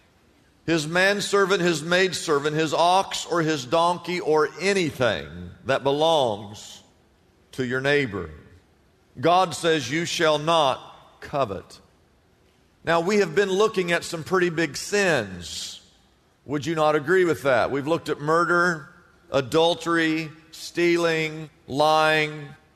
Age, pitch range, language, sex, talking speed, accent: 50-69, 145-190 Hz, English, male, 120 wpm, American